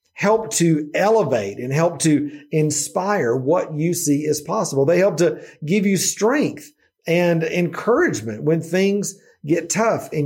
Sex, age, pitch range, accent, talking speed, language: male, 40-59, 140-175 Hz, American, 145 wpm, English